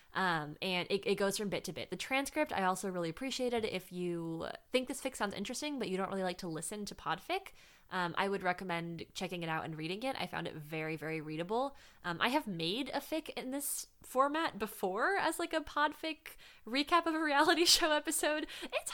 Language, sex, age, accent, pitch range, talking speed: English, female, 20-39, American, 170-245 Hz, 220 wpm